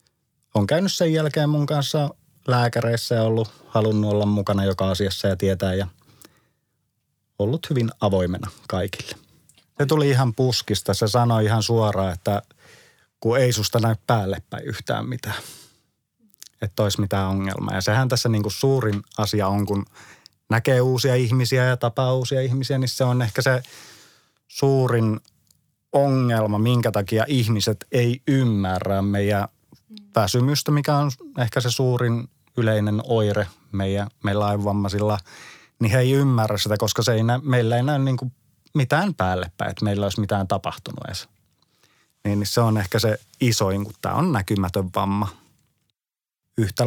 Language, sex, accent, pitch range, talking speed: Finnish, male, native, 105-130 Hz, 145 wpm